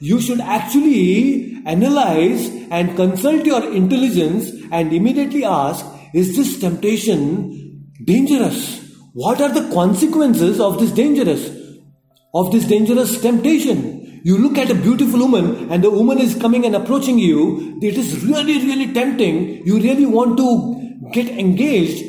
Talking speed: 140 wpm